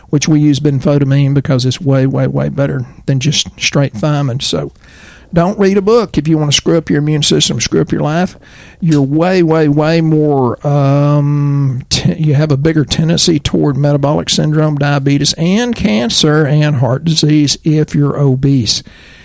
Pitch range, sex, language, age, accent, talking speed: 130-155 Hz, male, English, 50-69, American, 175 wpm